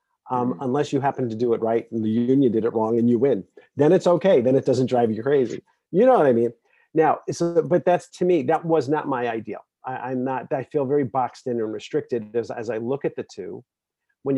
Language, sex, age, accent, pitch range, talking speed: English, male, 40-59, American, 115-150 Hz, 250 wpm